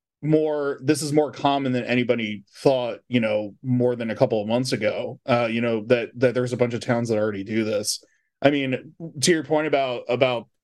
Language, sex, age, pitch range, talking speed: English, male, 20-39, 115-130 Hz, 215 wpm